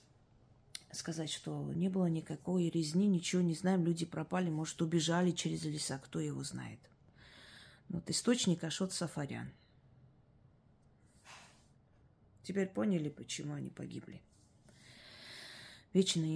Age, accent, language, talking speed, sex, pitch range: 30-49, native, Russian, 105 wpm, female, 140-185 Hz